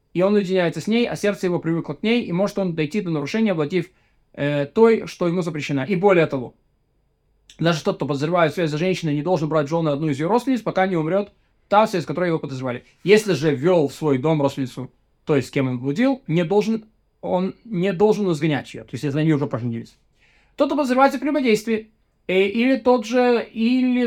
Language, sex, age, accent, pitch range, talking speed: Russian, male, 20-39, native, 160-210 Hz, 205 wpm